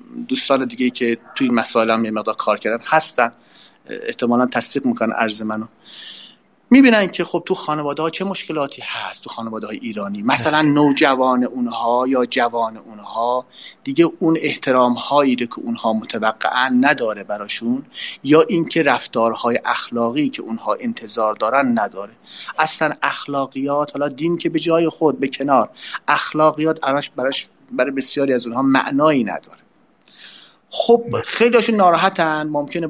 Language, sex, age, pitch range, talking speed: Persian, male, 30-49, 120-175 Hz, 135 wpm